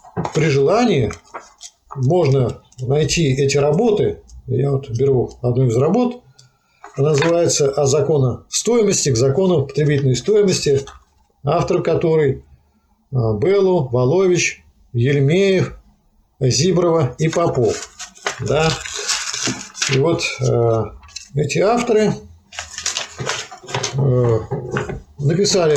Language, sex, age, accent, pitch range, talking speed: Russian, male, 50-69, native, 130-170 Hz, 80 wpm